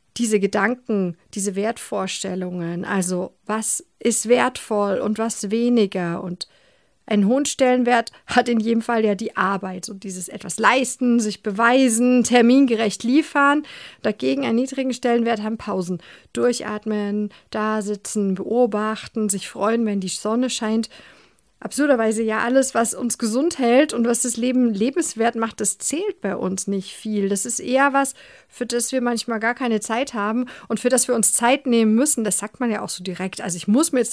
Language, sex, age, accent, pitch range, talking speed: German, female, 50-69, German, 210-250 Hz, 170 wpm